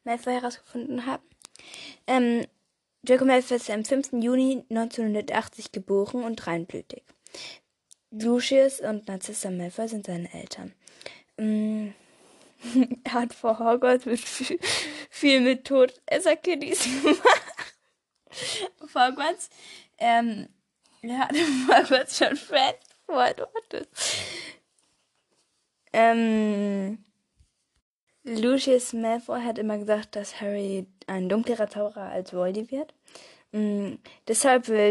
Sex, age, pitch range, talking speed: female, 10-29, 205-255 Hz, 95 wpm